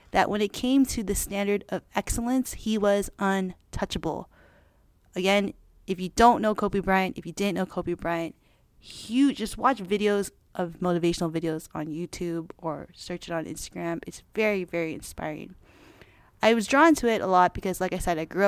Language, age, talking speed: English, 20-39, 180 wpm